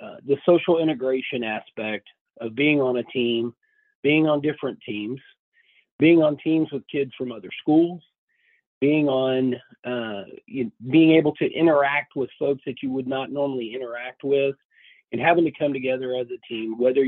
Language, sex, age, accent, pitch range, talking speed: English, male, 40-59, American, 130-160 Hz, 160 wpm